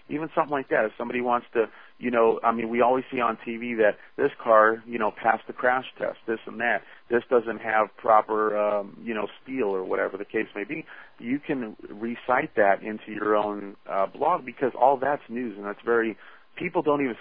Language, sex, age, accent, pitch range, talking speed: English, male, 40-59, American, 105-120 Hz, 215 wpm